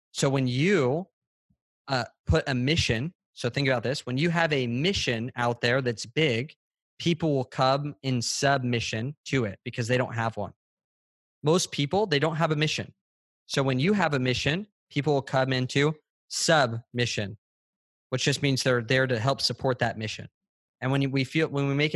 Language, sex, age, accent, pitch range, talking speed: English, male, 20-39, American, 120-140 Hz, 185 wpm